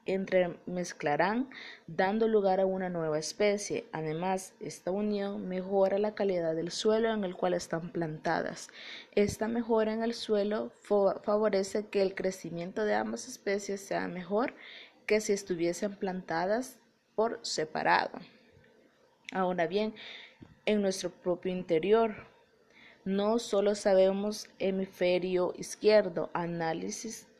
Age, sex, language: 20-39, female, Spanish